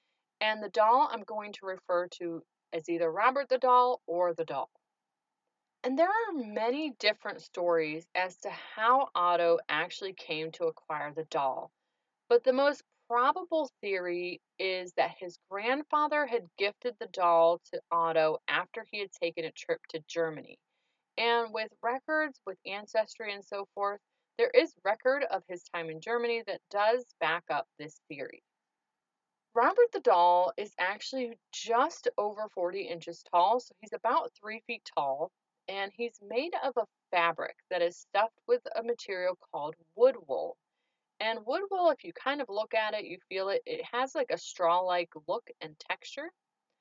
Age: 30-49